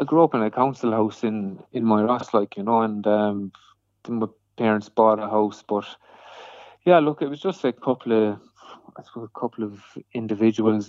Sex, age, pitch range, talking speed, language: male, 30-49, 105-115 Hz, 195 wpm, English